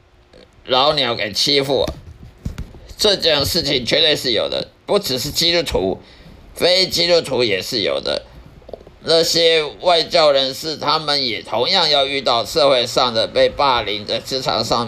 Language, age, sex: Chinese, 50-69, male